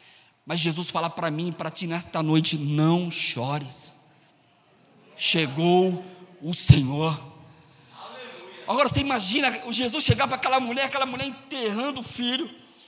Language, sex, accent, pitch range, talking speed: Portuguese, male, Brazilian, 170-250 Hz, 125 wpm